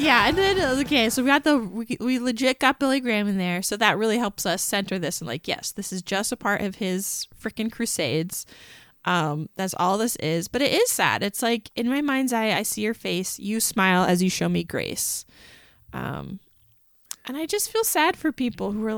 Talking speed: 225 wpm